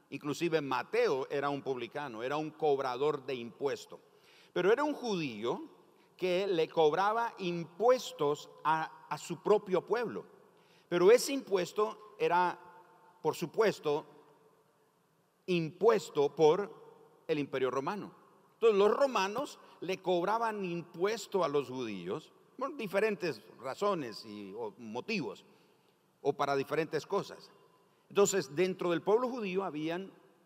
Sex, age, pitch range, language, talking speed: male, 50-69, 160-225 Hz, Spanish, 115 wpm